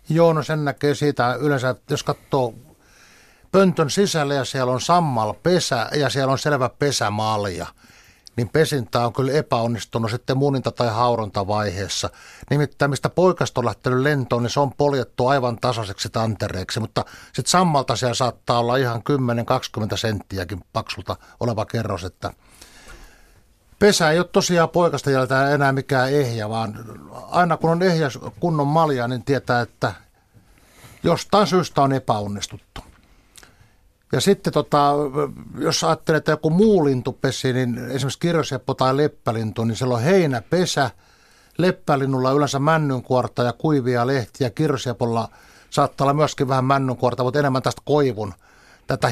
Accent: native